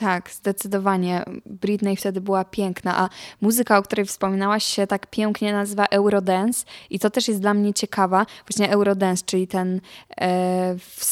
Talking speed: 155 wpm